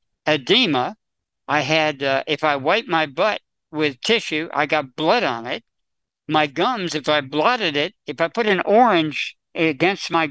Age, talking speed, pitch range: 60-79, 170 wpm, 150-200 Hz